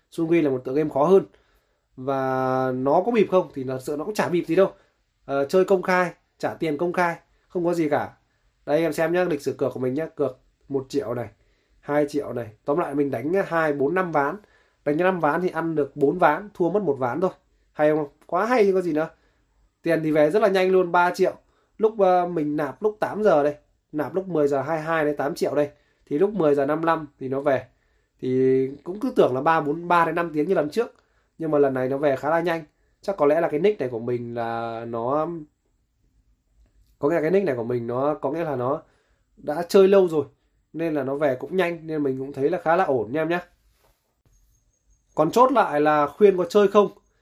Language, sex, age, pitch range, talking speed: Vietnamese, male, 20-39, 140-175 Hz, 240 wpm